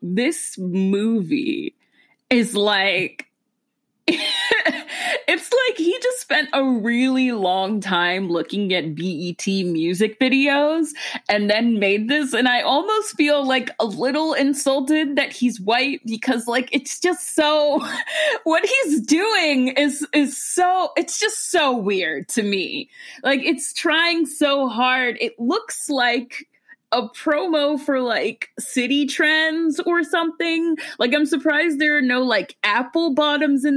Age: 20-39